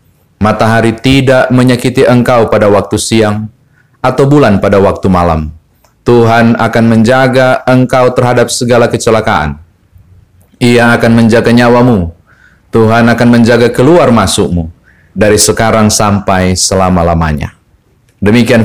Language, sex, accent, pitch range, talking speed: Indonesian, male, native, 100-120 Hz, 105 wpm